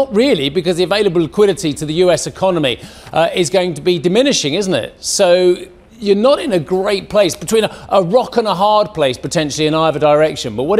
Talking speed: 215 wpm